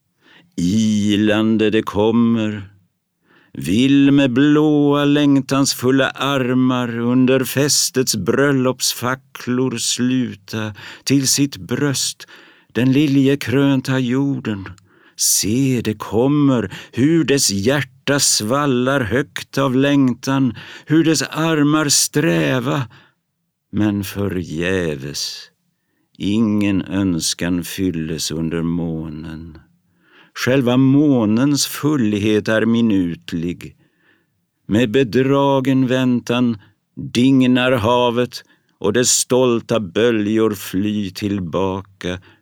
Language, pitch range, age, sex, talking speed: Swedish, 100-135 Hz, 50-69, male, 80 wpm